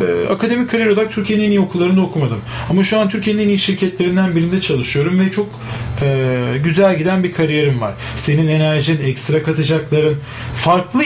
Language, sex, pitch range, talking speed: Turkish, male, 135-210 Hz, 165 wpm